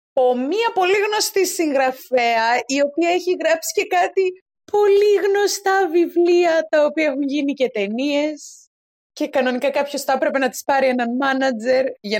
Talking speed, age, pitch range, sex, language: 150 wpm, 20-39, 220-325 Hz, female, Greek